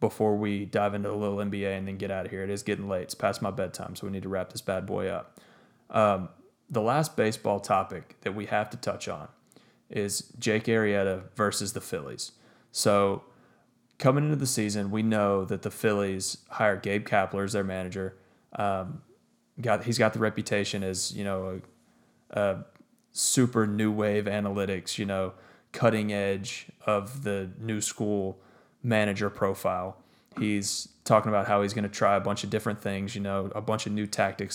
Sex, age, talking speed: male, 20-39, 190 wpm